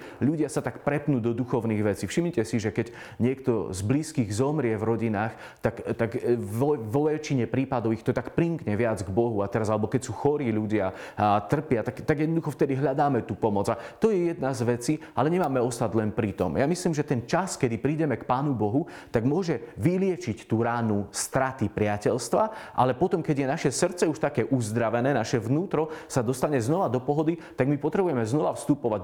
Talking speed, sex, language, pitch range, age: 200 wpm, male, Slovak, 115-150 Hz, 30-49